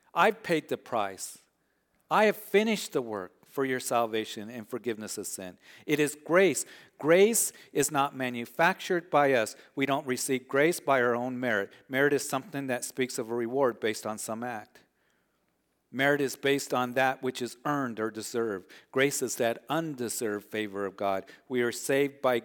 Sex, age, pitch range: male, 40-59, 115-140 Hz